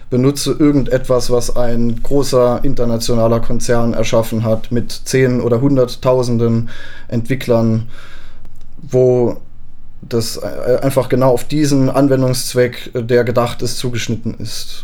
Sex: male